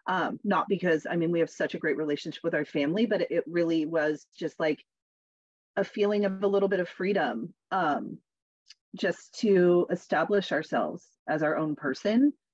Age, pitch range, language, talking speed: 30-49, 160-200 Hz, English, 175 wpm